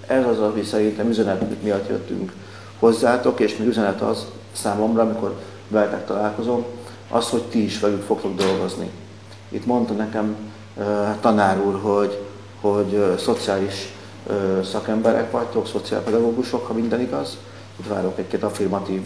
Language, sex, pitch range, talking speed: Hungarian, male, 100-115 Hz, 140 wpm